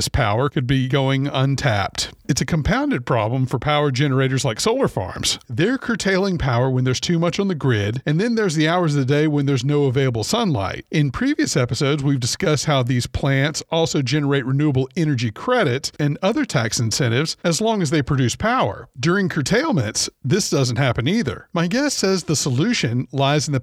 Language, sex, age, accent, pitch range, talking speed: English, male, 40-59, American, 130-165 Hz, 190 wpm